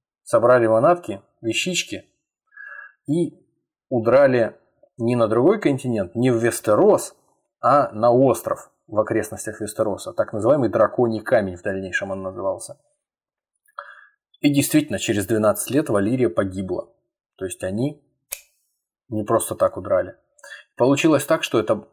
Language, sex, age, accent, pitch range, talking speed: Russian, male, 20-39, native, 95-125 Hz, 120 wpm